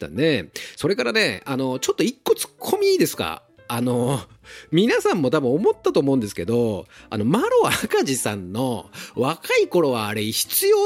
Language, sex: Japanese, male